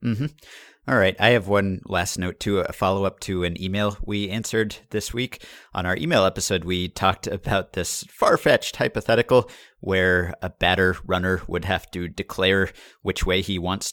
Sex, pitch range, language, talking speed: male, 90-115 Hz, English, 170 wpm